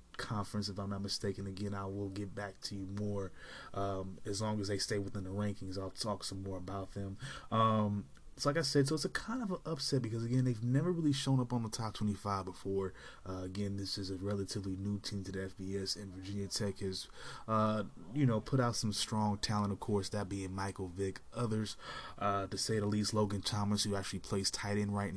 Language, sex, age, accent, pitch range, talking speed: English, male, 20-39, American, 95-115 Hz, 225 wpm